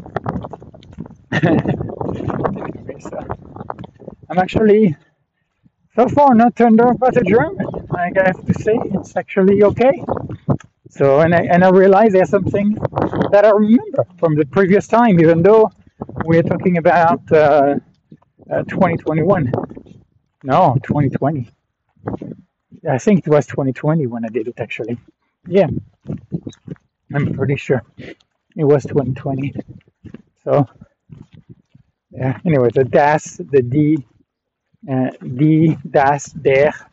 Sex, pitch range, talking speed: male, 140-185 Hz, 120 wpm